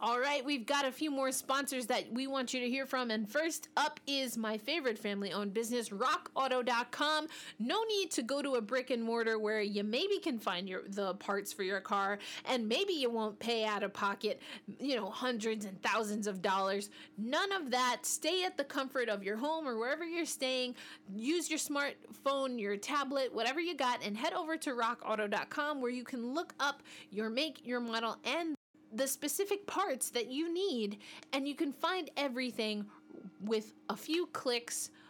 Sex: female